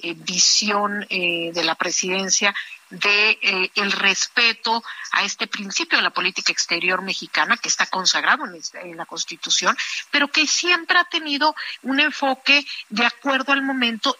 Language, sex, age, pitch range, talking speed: Spanish, female, 50-69, 195-265 Hz, 155 wpm